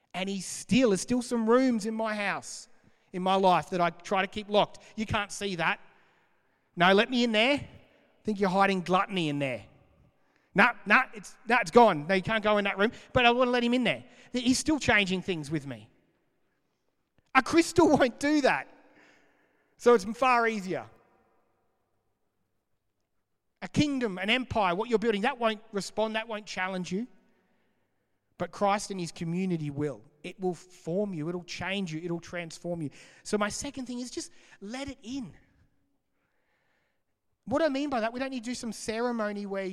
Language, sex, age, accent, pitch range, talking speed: English, male, 40-59, Australian, 175-240 Hz, 185 wpm